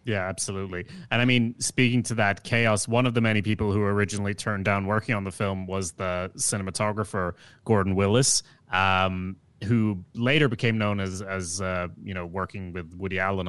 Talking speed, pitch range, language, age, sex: 180 wpm, 95-115 Hz, English, 30-49, male